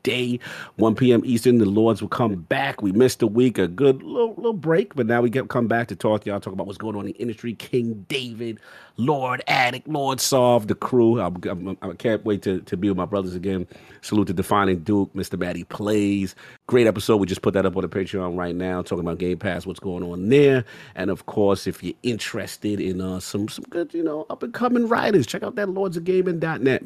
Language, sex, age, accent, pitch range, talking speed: English, male, 40-59, American, 95-125 Hz, 235 wpm